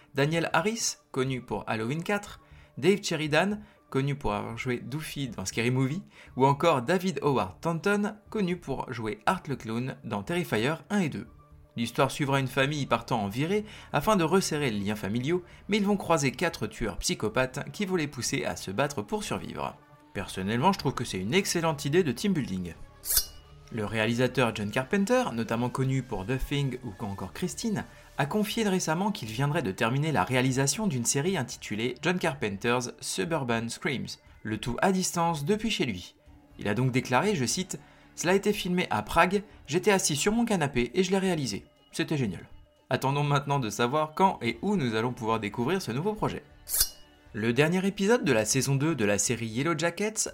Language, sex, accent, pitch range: French, male, French, 115-185 Hz